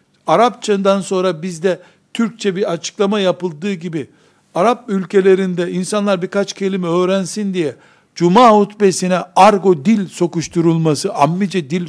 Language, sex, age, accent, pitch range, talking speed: Turkish, male, 60-79, native, 160-205 Hz, 110 wpm